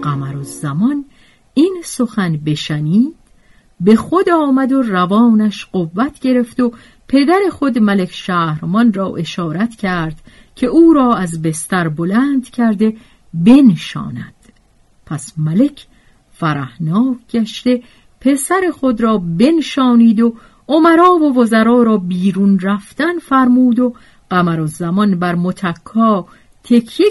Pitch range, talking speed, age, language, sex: 175-250 Hz, 115 wpm, 50-69, Persian, female